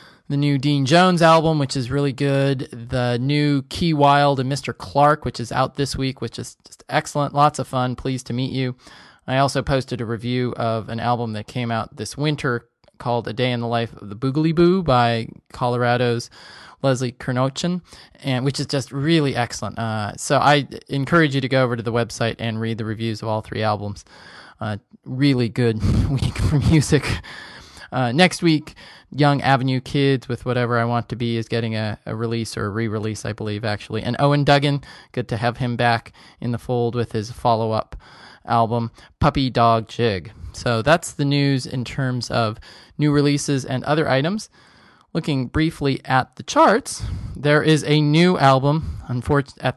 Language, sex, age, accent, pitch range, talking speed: English, male, 20-39, American, 115-140 Hz, 185 wpm